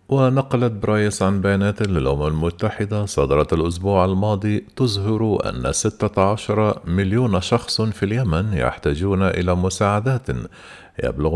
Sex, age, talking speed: male, 50-69, 105 wpm